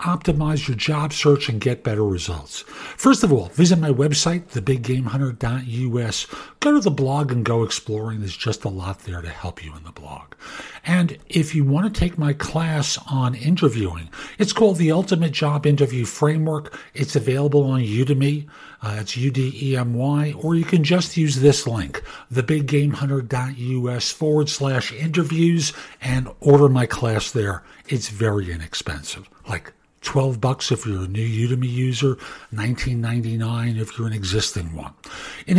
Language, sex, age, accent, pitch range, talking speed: English, male, 50-69, American, 115-155 Hz, 155 wpm